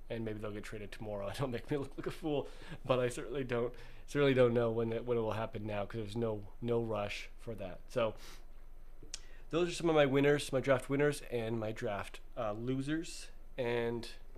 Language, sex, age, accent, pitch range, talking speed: English, male, 20-39, American, 115-135 Hz, 210 wpm